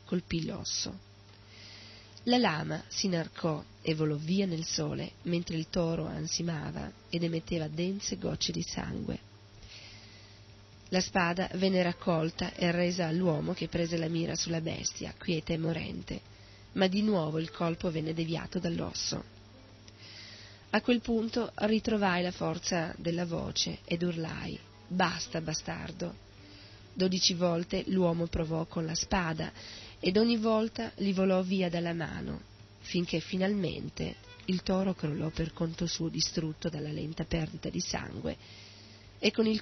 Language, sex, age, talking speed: Italian, female, 30-49, 135 wpm